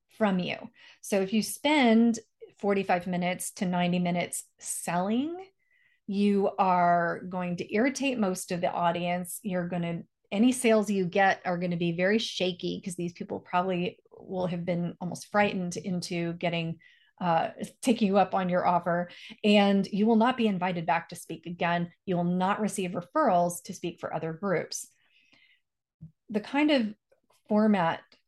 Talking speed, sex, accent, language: 160 wpm, female, American, English